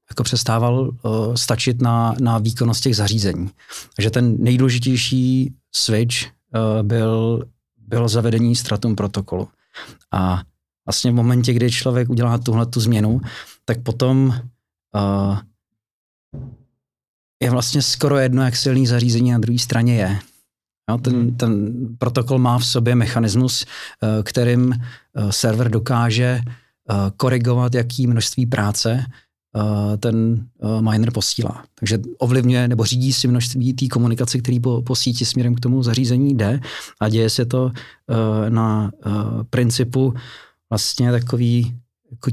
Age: 40-59